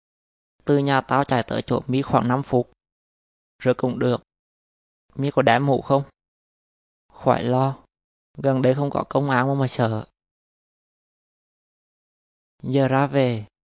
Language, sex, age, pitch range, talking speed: Vietnamese, male, 20-39, 120-135 Hz, 140 wpm